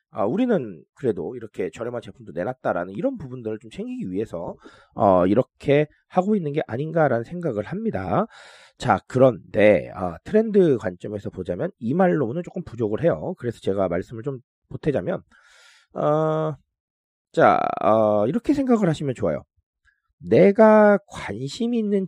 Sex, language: male, Korean